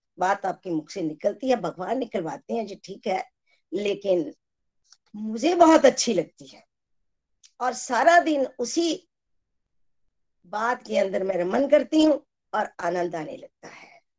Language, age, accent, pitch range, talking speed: Hindi, 50-69, native, 195-290 Hz, 145 wpm